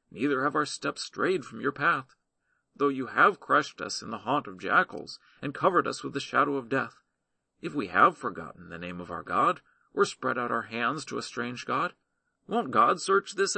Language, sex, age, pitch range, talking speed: English, male, 40-59, 135-220 Hz, 210 wpm